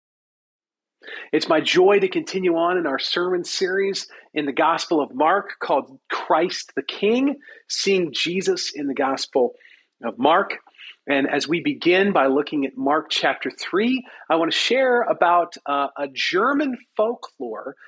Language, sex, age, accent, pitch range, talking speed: English, male, 40-59, American, 150-240 Hz, 150 wpm